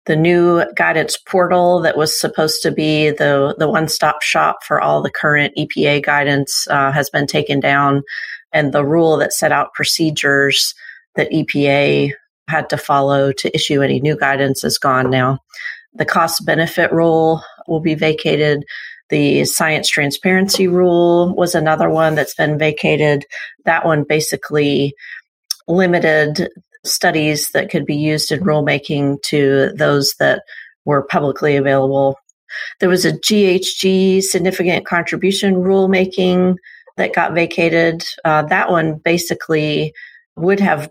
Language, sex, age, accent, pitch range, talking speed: English, female, 40-59, American, 145-170 Hz, 135 wpm